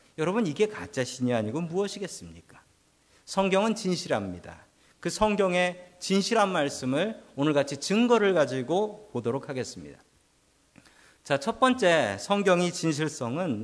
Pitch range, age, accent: 140-205 Hz, 40-59, native